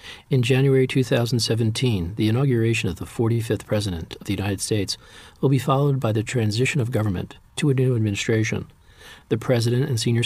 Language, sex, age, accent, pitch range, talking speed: English, male, 40-59, American, 105-130 Hz, 170 wpm